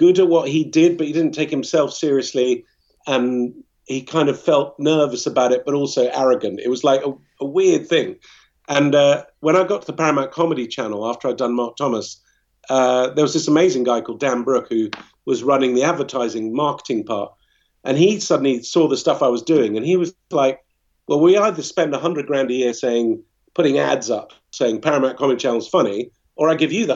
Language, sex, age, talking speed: English, male, 50-69, 215 wpm